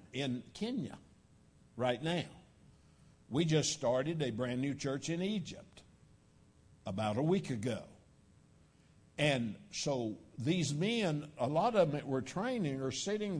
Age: 60-79